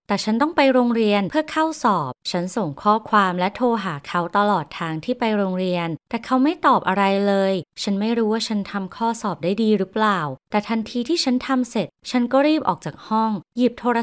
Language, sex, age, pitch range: Thai, female, 20-39, 180-235 Hz